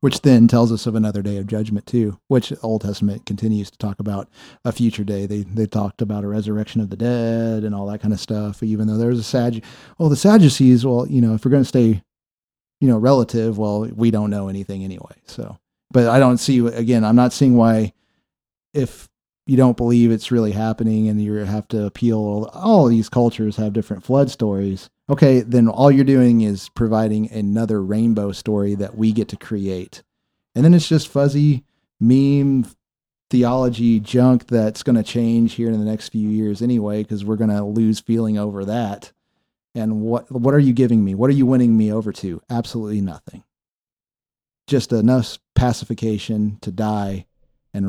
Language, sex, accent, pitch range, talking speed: English, male, American, 105-125 Hz, 190 wpm